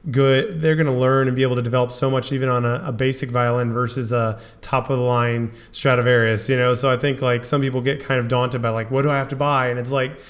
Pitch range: 120-140 Hz